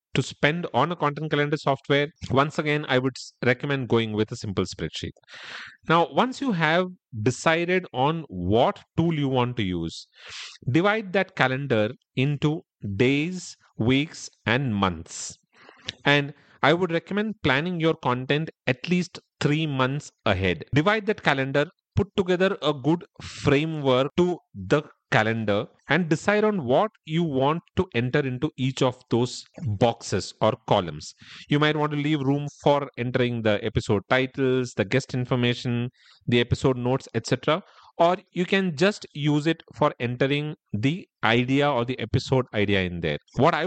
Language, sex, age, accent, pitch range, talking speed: English, male, 40-59, Indian, 125-165 Hz, 155 wpm